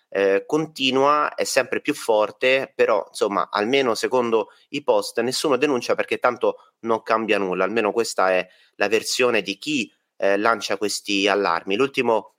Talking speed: 150 wpm